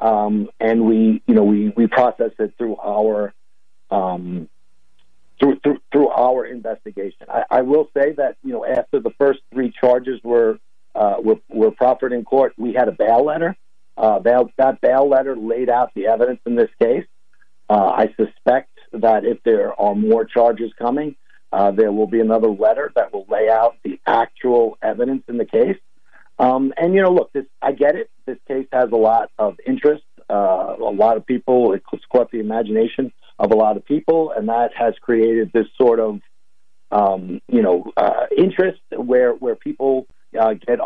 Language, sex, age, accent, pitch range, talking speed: English, male, 50-69, American, 110-150 Hz, 185 wpm